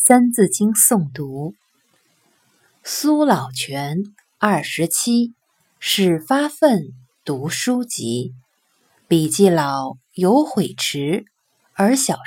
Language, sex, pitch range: Chinese, female, 150-230 Hz